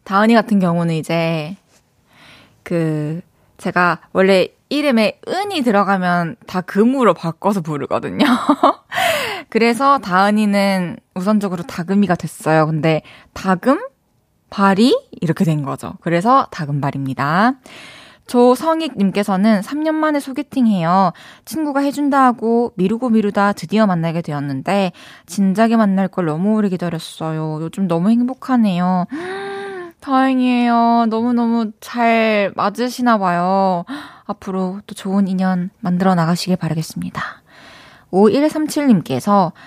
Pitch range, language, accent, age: 175-235 Hz, Korean, native, 20-39